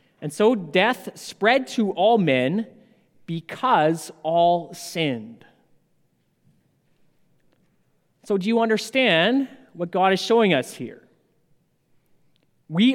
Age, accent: 30-49, American